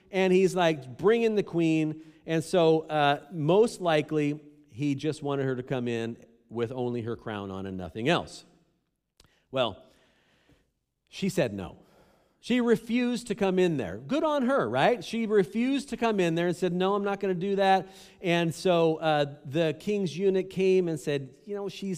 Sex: male